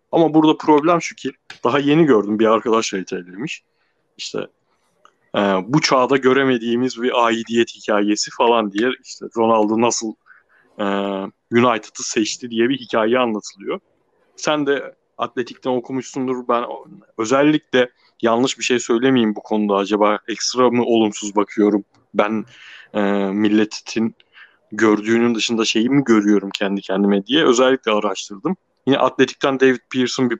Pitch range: 110-145 Hz